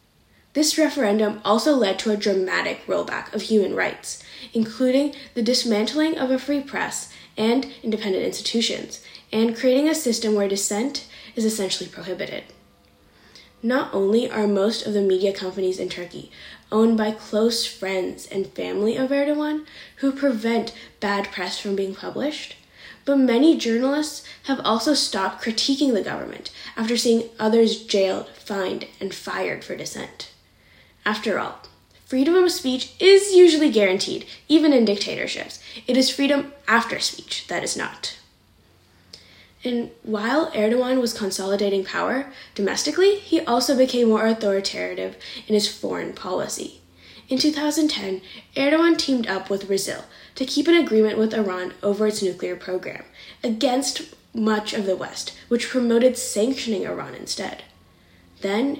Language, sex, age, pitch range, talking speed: English, female, 10-29, 200-270 Hz, 140 wpm